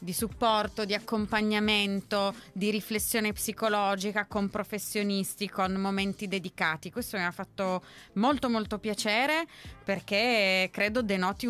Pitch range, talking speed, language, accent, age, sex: 170-210 Hz, 115 wpm, Italian, native, 30-49, female